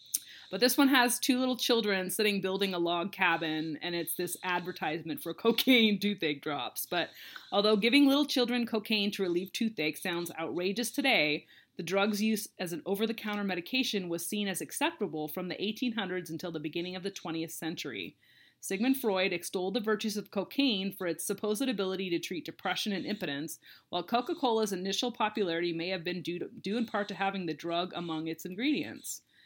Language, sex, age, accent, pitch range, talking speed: English, female, 30-49, American, 170-220 Hz, 175 wpm